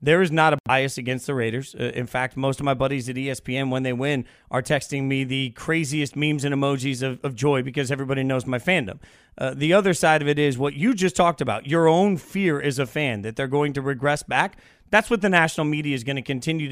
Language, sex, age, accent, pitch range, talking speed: English, male, 40-59, American, 140-175 Hz, 250 wpm